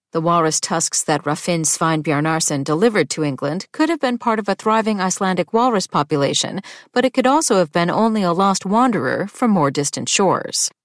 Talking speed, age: 185 wpm, 40-59